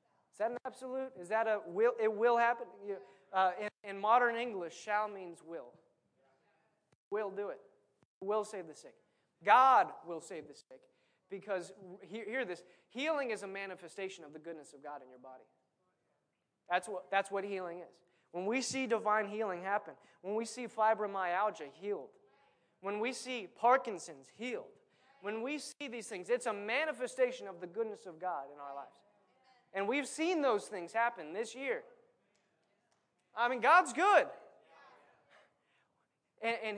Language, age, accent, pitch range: English, 20-39, American, 180-245 Hz